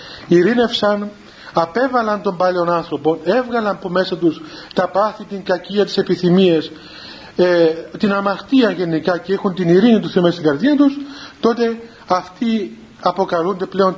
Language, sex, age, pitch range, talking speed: Greek, male, 40-59, 170-215 Hz, 140 wpm